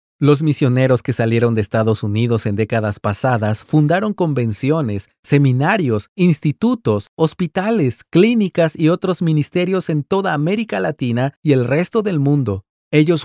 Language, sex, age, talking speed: Spanish, male, 40-59, 130 wpm